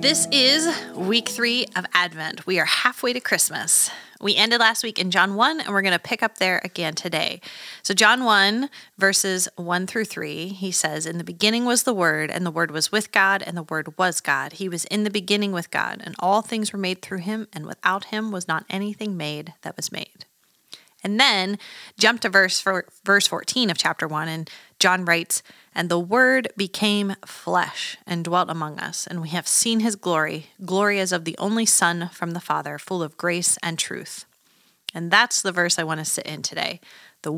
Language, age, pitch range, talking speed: English, 30-49, 170-210 Hz, 205 wpm